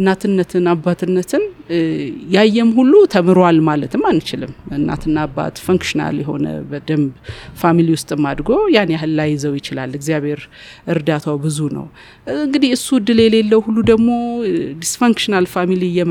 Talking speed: 110 wpm